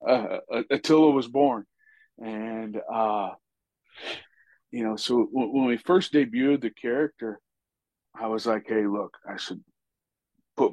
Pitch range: 105-125 Hz